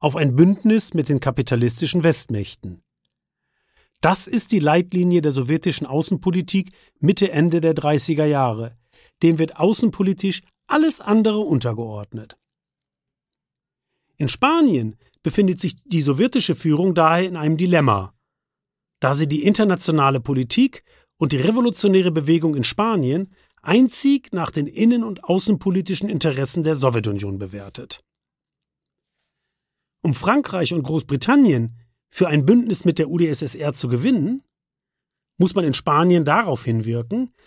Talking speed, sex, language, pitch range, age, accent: 120 wpm, male, German, 140-195 Hz, 40-59, German